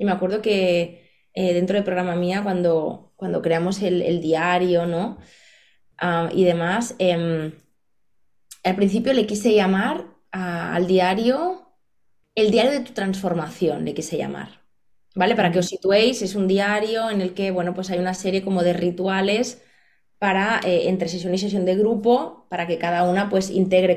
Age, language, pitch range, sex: 20-39, Spanish, 180-235 Hz, female